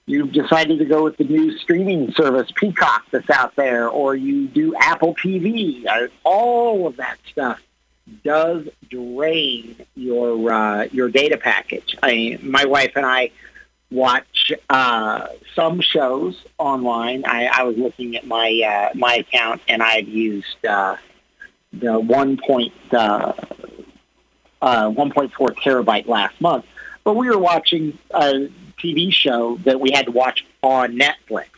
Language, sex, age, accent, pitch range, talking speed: English, male, 50-69, American, 120-165 Hz, 145 wpm